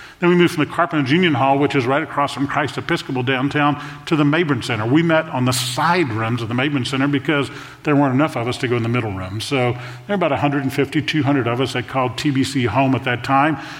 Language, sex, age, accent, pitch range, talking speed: English, male, 40-59, American, 125-150 Hz, 250 wpm